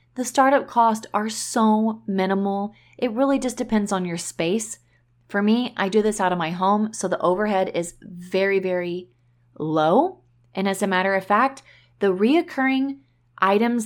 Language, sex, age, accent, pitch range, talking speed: English, female, 30-49, American, 180-225 Hz, 165 wpm